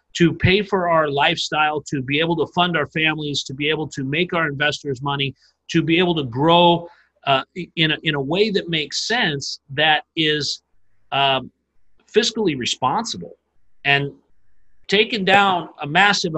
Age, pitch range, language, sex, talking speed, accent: 40-59, 150-195 Hz, English, male, 160 wpm, American